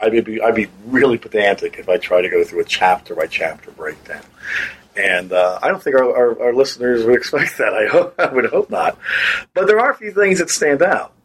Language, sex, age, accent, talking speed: English, male, 50-69, American, 225 wpm